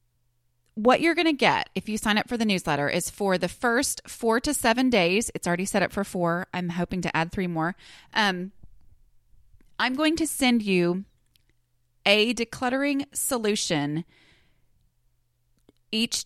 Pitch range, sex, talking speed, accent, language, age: 180-255 Hz, female, 155 wpm, American, English, 30-49